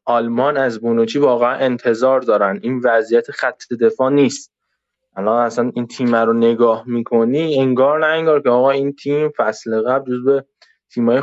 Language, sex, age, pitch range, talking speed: Persian, male, 20-39, 120-155 Hz, 155 wpm